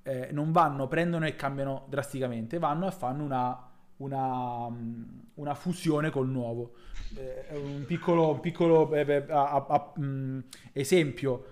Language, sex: Italian, male